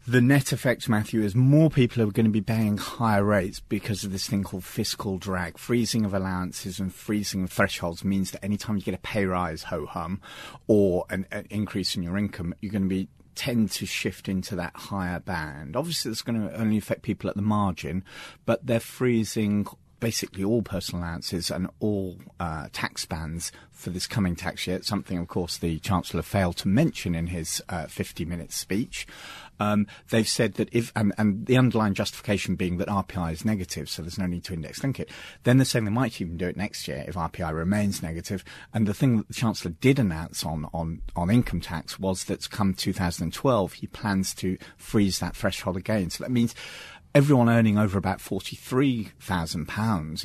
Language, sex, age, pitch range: English, male, 30-49, 90-110 Hz